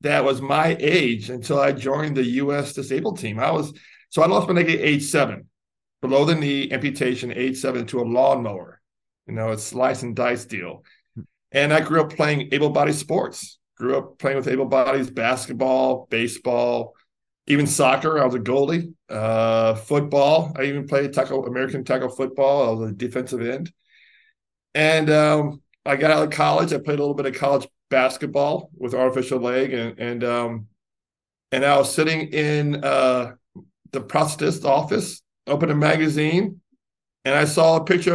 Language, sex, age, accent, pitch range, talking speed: English, male, 40-59, American, 130-170 Hz, 175 wpm